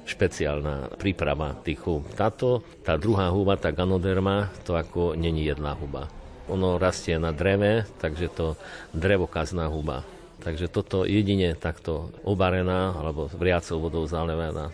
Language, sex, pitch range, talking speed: Slovak, male, 85-105 Hz, 130 wpm